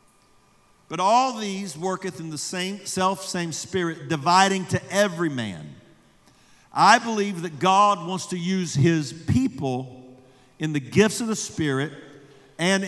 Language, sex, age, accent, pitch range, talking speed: English, male, 50-69, American, 155-195 Hz, 140 wpm